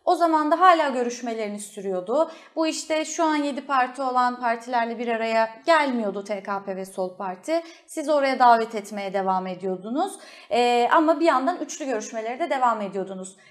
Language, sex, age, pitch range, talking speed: Turkish, female, 30-49, 225-325 Hz, 160 wpm